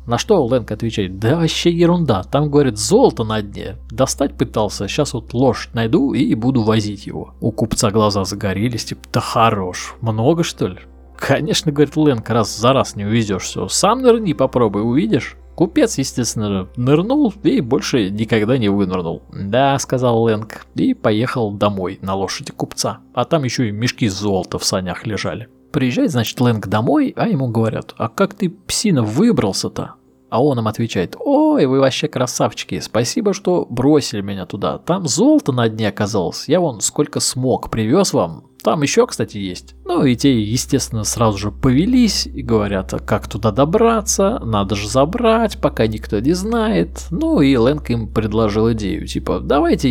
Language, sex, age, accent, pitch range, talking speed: Russian, male, 20-39, native, 105-150 Hz, 165 wpm